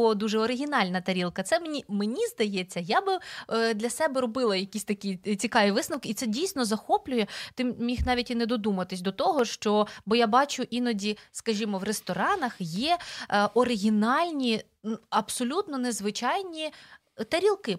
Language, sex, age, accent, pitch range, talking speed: Ukrainian, female, 20-39, native, 200-260 Hz, 140 wpm